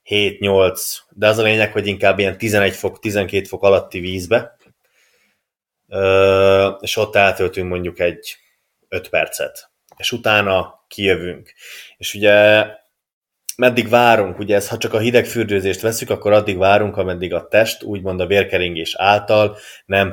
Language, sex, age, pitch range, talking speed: Hungarian, male, 20-39, 95-115 Hz, 130 wpm